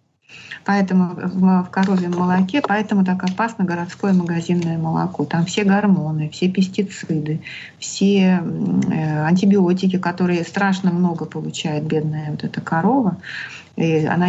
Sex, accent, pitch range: female, native, 165-200 Hz